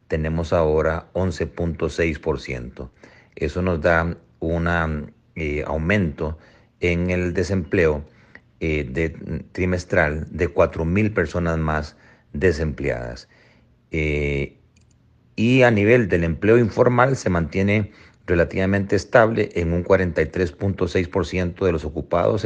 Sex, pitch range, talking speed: male, 80-100 Hz, 95 wpm